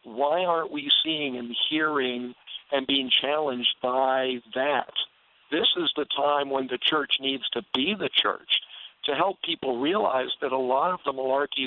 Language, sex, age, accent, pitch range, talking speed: English, male, 50-69, American, 130-150 Hz, 170 wpm